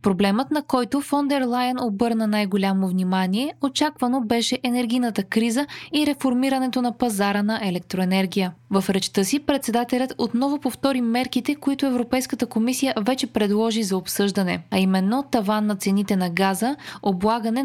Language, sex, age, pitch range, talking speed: Bulgarian, female, 20-39, 205-260 Hz, 135 wpm